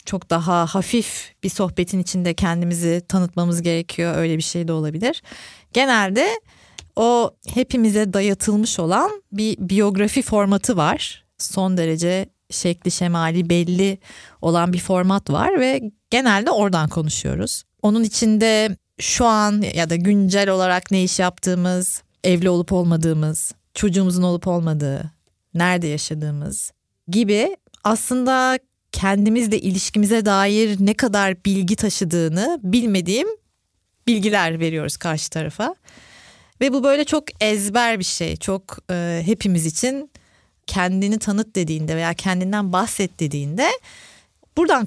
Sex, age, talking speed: female, 30-49, 120 wpm